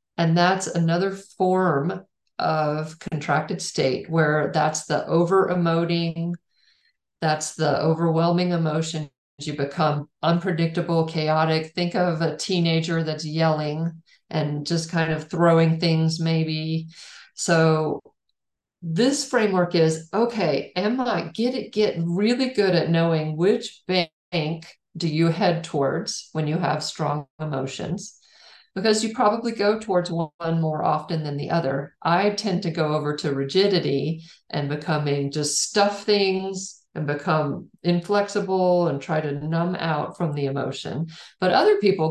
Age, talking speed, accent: 50-69, 135 wpm, American